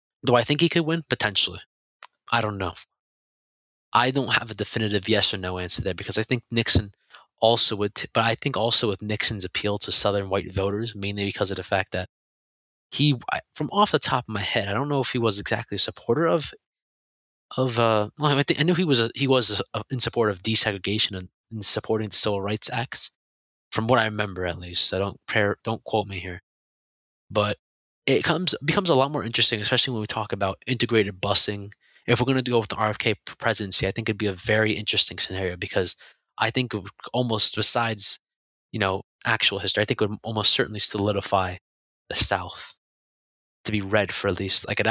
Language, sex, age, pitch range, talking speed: English, male, 20-39, 100-120 Hz, 210 wpm